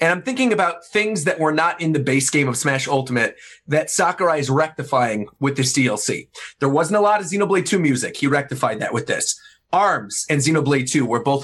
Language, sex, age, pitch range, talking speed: English, male, 30-49, 140-200 Hz, 215 wpm